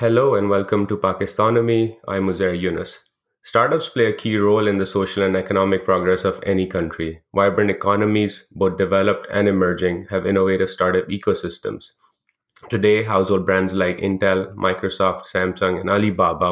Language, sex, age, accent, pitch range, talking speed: English, male, 30-49, Indian, 95-105 Hz, 150 wpm